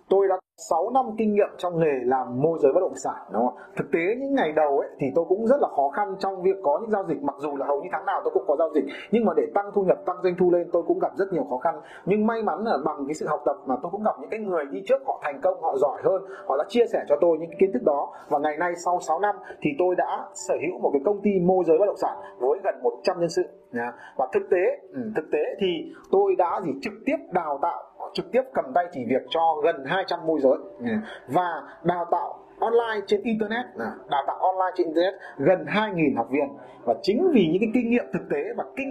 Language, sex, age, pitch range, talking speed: Vietnamese, male, 30-49, 175-235 Hz, 265 wpm